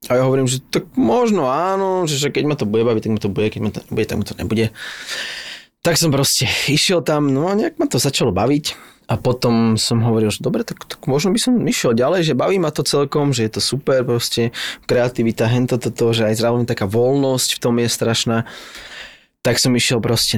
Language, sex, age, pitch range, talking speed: Slovak, male, 20-39, 115-150 Hz, 225 wpm